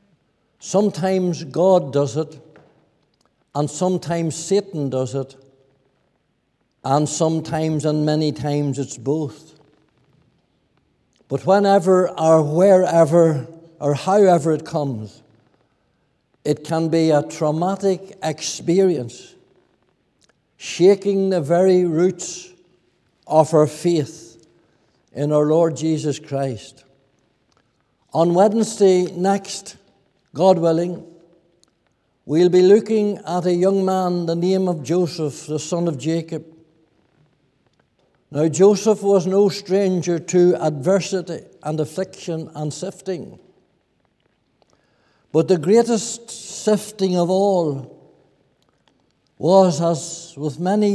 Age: 60-79